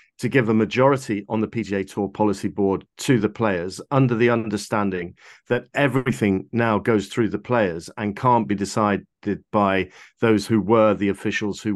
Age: 50-69